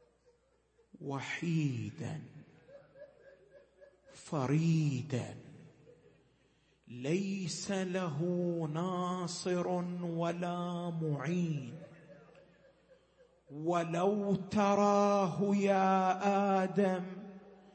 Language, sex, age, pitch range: Arabic, male, 50-69, 185-245 Hz